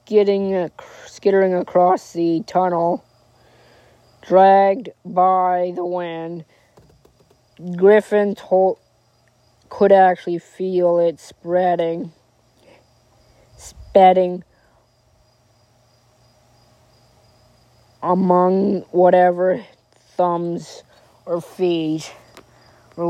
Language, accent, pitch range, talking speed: English, American, 165-185 Hz, 55 wpm